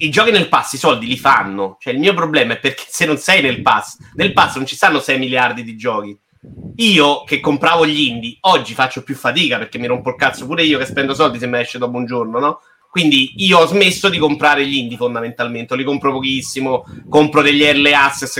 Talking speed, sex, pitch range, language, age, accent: 230 wpm, male, 130-155 Hz, Italian, 30-49, native